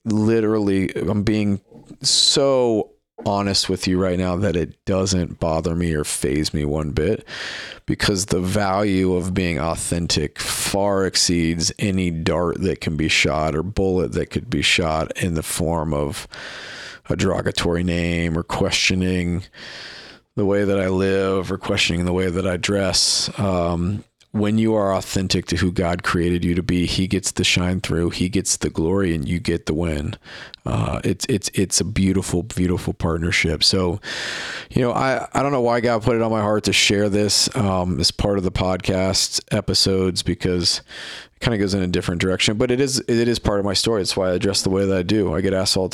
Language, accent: English, American